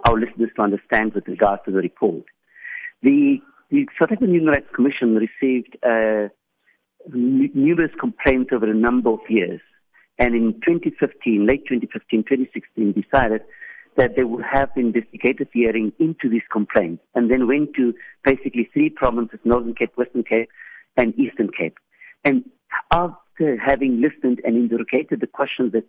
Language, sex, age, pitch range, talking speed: English, male, 50-69, 115-155 Hz, 150 wpm